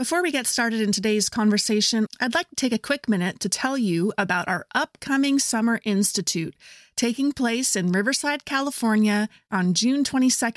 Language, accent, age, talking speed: English, American, 30-49, 165 wpm